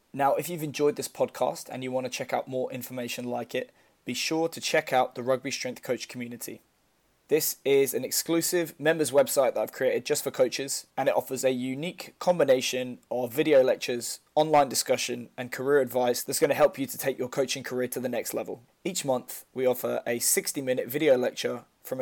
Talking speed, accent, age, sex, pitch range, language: 205 wpm, British, 20-39, male, 125-145 Hz, English